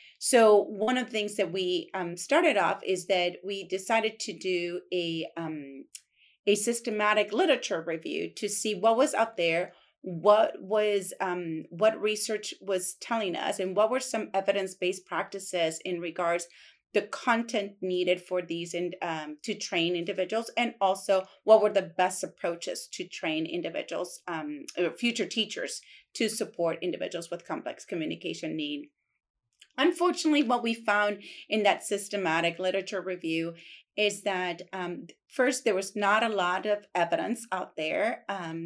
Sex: female